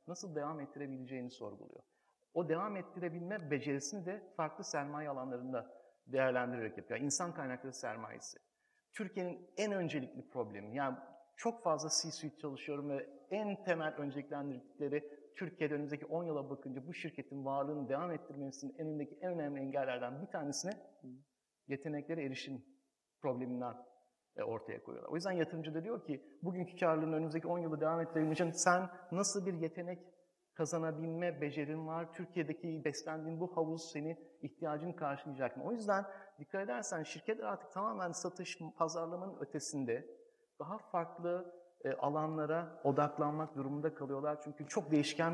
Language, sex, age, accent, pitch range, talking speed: English, male, 50-69, Turkish, 145-175 Hz, 130 wpm